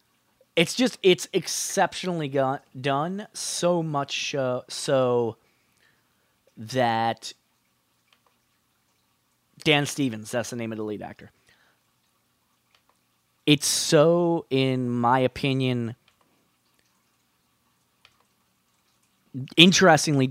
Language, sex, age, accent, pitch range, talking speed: English, male, 30-49, American, 115-145 Hz, 70 wpm